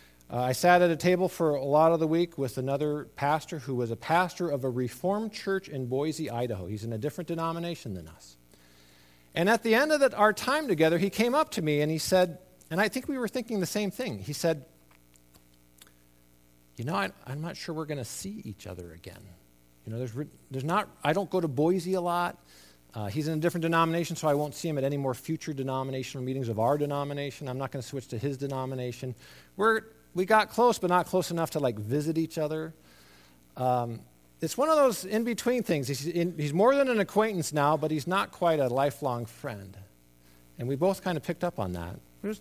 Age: 50-69